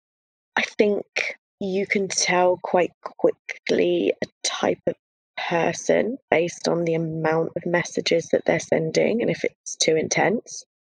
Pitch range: 180-250 Hz